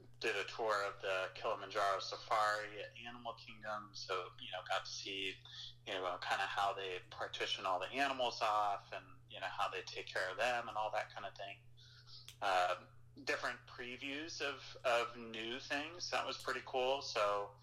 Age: 30-49